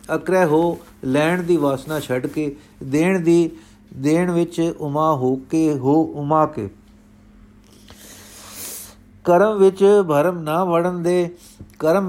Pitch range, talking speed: 125-165 Hz, 120 wpm